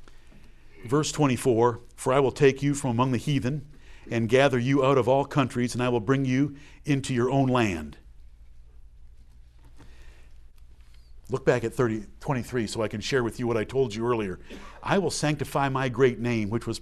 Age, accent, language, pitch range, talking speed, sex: 50-69, American, English, 120-185 Hz, 180 wpm, male